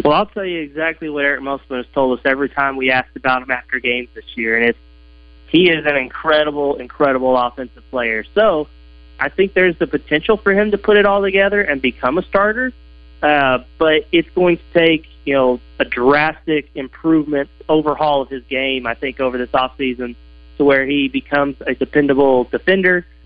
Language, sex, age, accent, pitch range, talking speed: English, male, 30-49, American, 125-155 Hz, 195 wpm